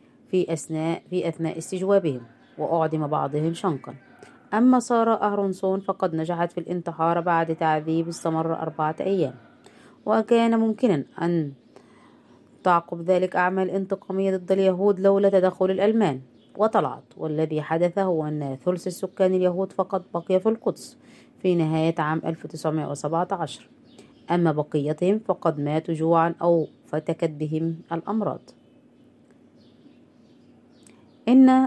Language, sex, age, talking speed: Arabic, female, 30-49, 110 wpm